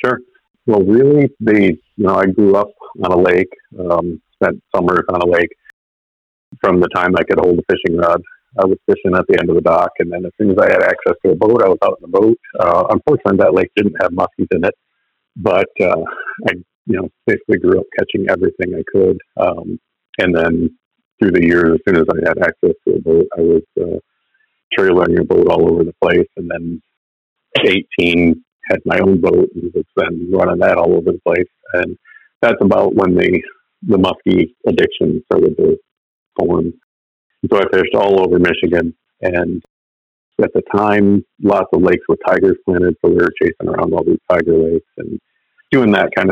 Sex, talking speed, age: male, 200 wpm, 50-69